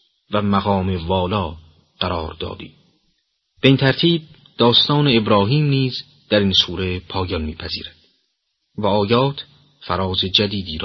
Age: 40-59